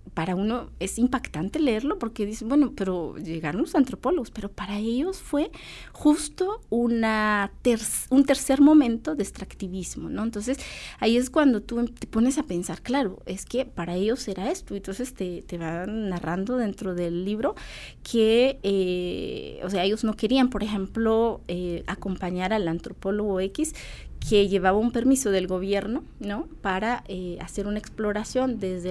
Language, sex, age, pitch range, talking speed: Spanish, female, 30-49, 185-260 Hz, 160 wpm